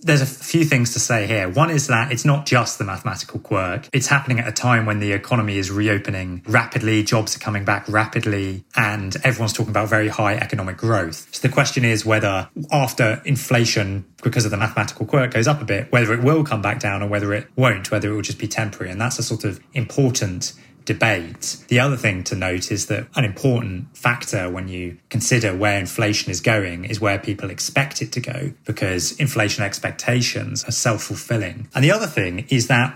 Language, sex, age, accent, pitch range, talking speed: English, male, 20-39, British, 105-130 Hz, 210 wpm